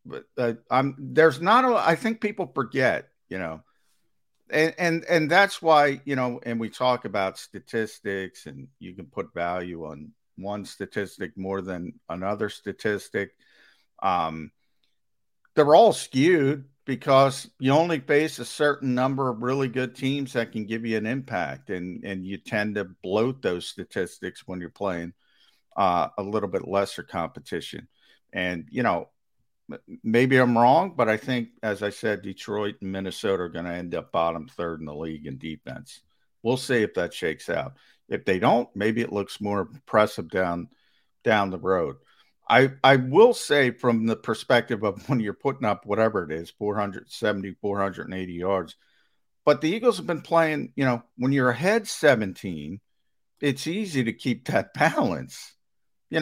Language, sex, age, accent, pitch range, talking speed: English, male, 50-69, American, 95-135 Hz, 165 wpm